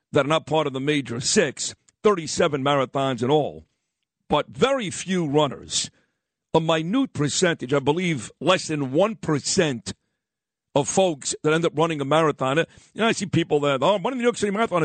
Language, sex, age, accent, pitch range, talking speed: English, male, 50-69, American, 145-170 Hz, 185 wpm